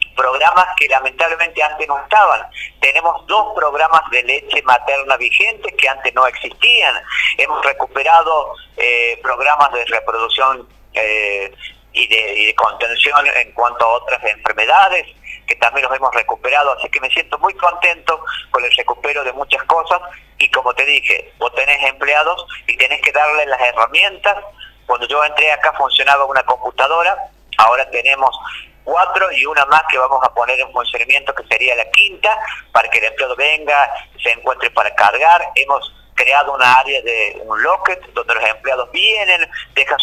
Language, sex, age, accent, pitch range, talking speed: Spanish, male, 40-59, Argentinian, 135-190 Hz, 160 wpm